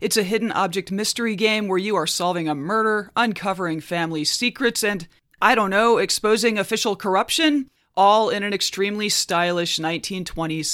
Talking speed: 155 wpm